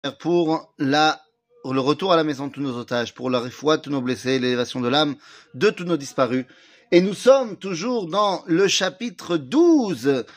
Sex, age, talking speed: male, 40-59, 195 wpm